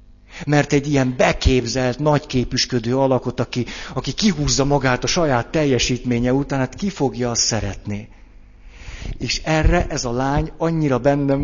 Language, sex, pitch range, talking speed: Hungarian, male, 105-140 Hz, 140 wpm